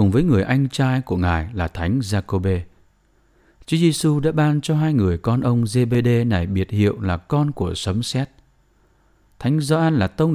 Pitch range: 95-140 Hz